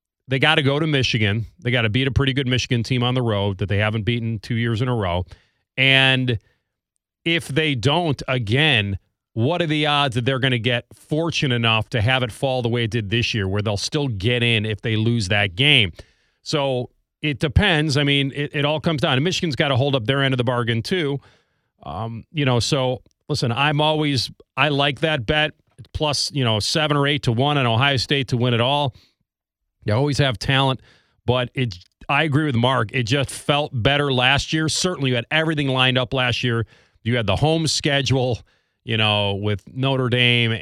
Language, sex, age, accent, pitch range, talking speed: English, male, 40-59, American, 115-140 Hz, 215 wpm